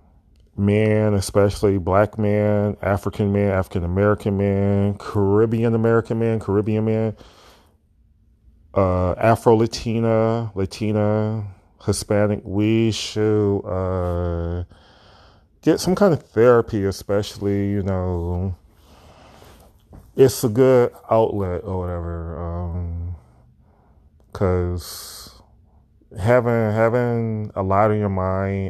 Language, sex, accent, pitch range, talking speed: English, male, American, 90-105 Hz, 90 wpm